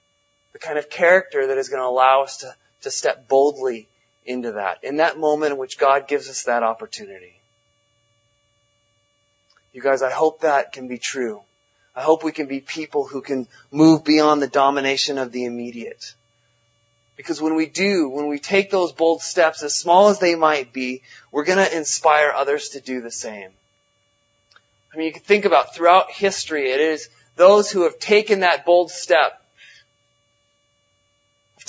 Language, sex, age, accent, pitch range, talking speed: English, male, 30-49, American, 115-170 Hz, 175 wpm